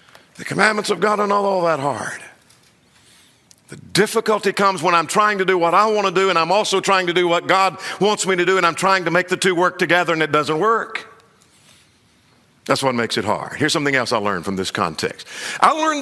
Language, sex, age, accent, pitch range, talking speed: English, male, 50-69, American, 150-200 Hz, 230 wpm